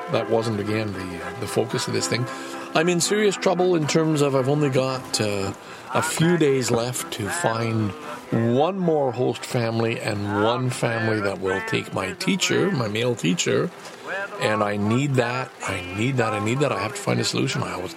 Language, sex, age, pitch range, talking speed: English, male, 50-69, 110-170 Hz, 200 wpm